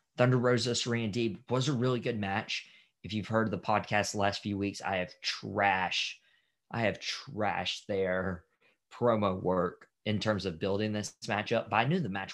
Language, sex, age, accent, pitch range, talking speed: English, male, 20-39, American, 95-120 Hz, 190 wpm